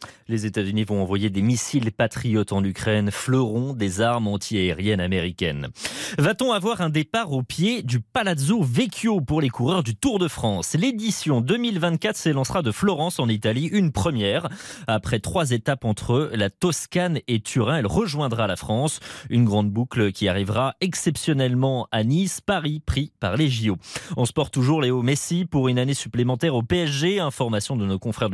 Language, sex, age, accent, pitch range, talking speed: French, male, 30-49, French, 110-165 Hz, 170 wpm